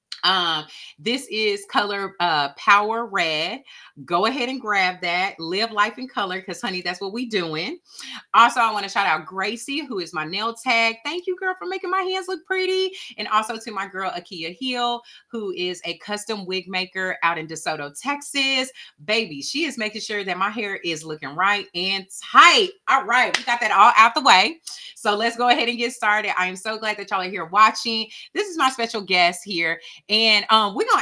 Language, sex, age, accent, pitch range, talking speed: English, female, 30-49, American, 180-240 Hz, 210 wpm